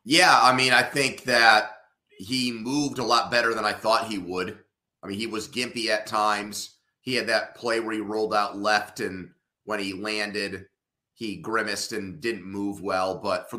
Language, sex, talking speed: English, male, 195 wpm